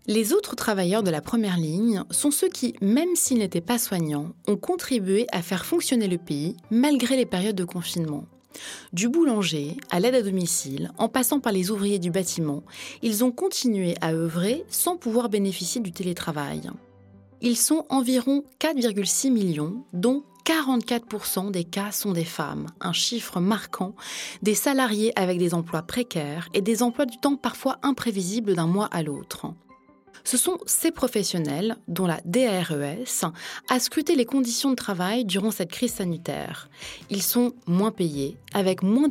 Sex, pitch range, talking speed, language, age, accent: female, 180-255 Hz, 160 wpm, French, 20-39, French